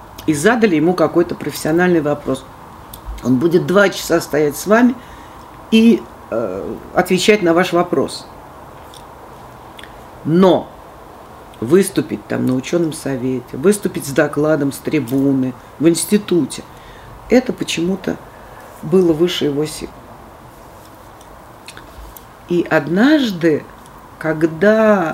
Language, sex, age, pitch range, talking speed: Russian, female, 50-69, 145-180 Hz, 100 wpm